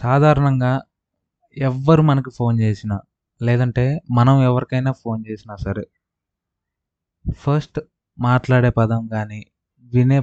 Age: 20-39